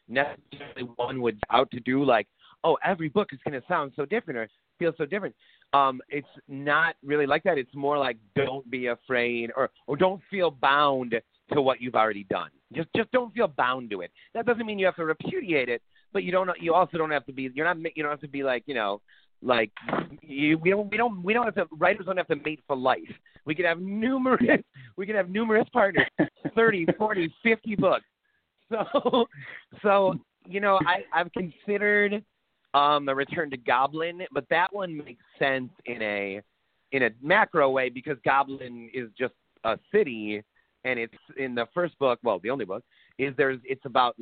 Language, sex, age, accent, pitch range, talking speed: English, male, 30-49, American, 125-190 Hz, 200 wpm